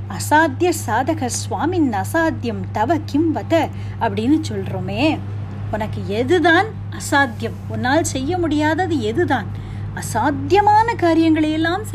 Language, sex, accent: Tamil, female, native